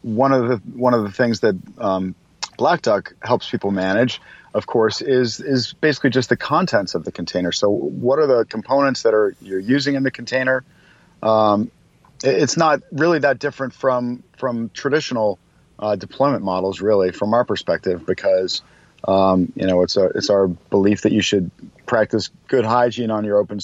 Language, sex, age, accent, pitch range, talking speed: English, male, 40-59, American, 100-130 Hz, 185 wpm